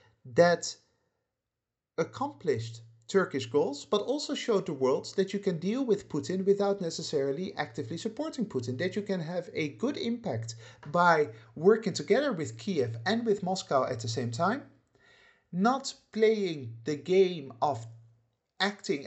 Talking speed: 140 wpm